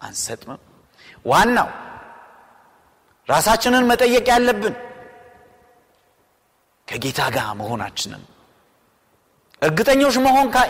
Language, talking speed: Amharic, 60 wpm